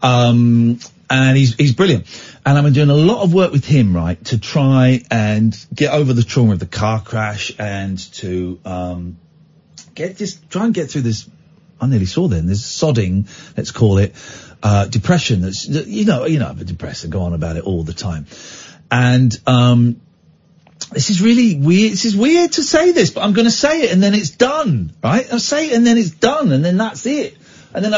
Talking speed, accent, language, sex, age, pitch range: 210 wpm, British, English, male, 40-59, 115-175 Hz